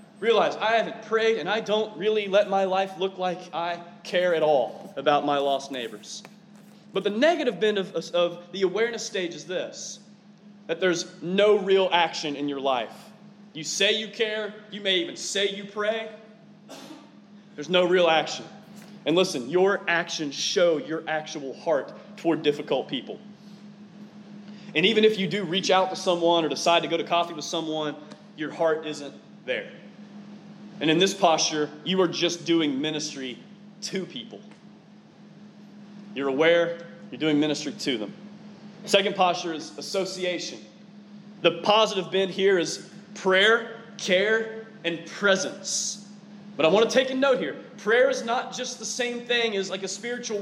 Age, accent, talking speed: 30-49, American, 160 wpm